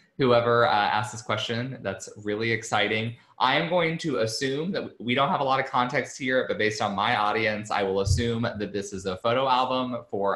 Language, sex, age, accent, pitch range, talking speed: English, male, 20-39, American, 100-125 Hz, 215 wpm